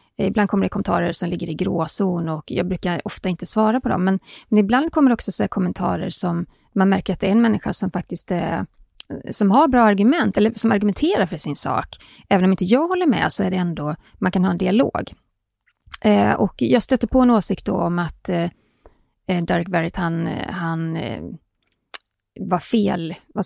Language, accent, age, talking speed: Swedish, native, 30-49, 205 wpm